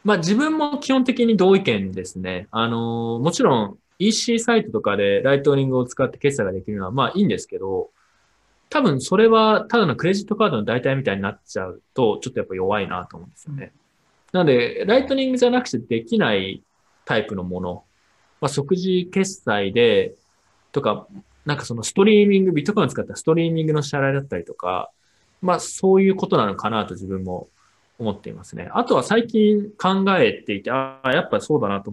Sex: male